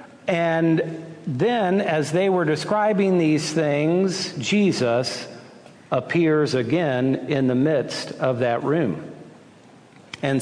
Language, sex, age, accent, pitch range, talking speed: English, male, 50-69, American, 135-185 Hz, 105 wpm